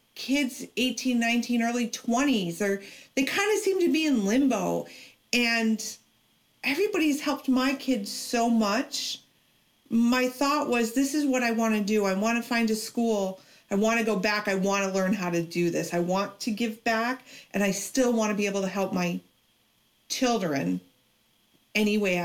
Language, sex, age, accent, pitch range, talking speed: English, female, 40-59, American, 190-240 Hz, 185 wpm